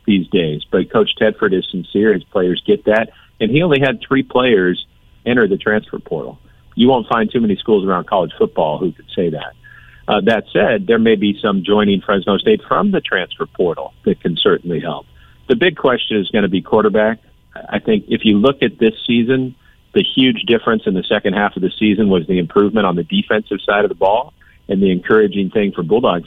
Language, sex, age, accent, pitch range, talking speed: English, male, 50-69, American, 100-125 Hz, 215 wpm